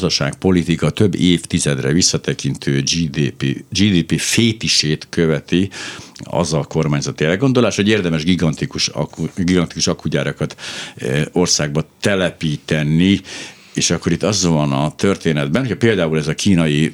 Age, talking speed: 60-79, 115 wpm